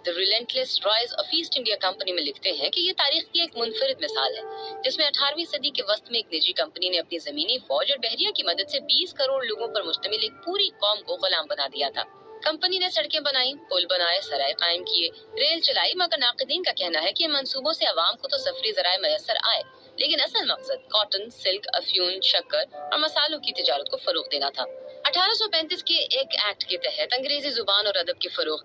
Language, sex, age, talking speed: Urdu, female, 30-49, 200 wpm